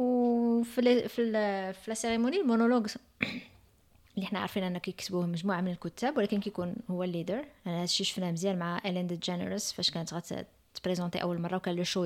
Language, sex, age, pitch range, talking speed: Arabic, female, 20-39, 170-215 Hz, 175 wpm